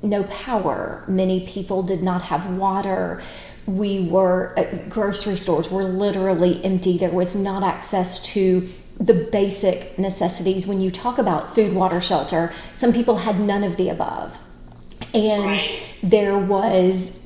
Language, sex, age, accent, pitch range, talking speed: English, female, 40-59, American, 180-210 Hz, 140 wpm